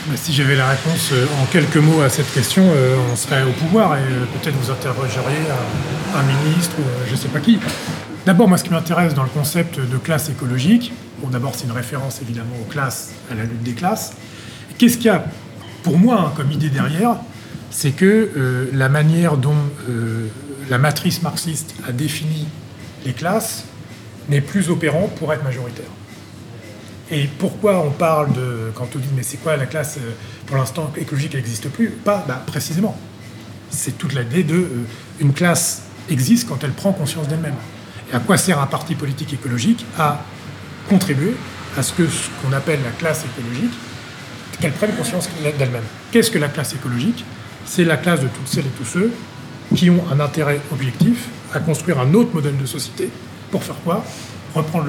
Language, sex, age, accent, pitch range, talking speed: French, male, 30-49, French, 125-160 Hz, 190 wpm